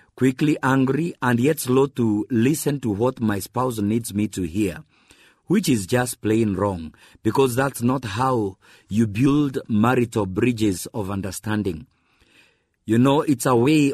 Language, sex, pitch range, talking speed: English, male, 105-135 Hz, 150 wpm